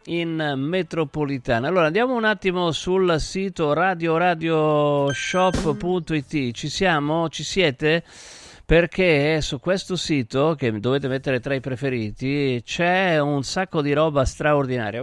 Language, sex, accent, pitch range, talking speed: Italian, male, native, 125-170 Hz, 115 wpm